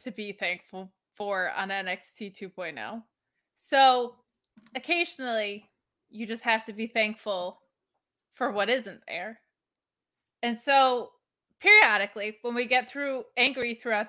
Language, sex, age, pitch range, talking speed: English, female, 20-39, 215-285 Hz, 120 wpm